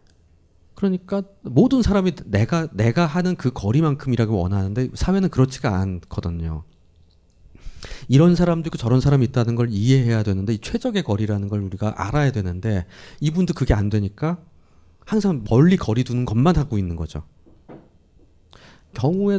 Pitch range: 90-140 Hz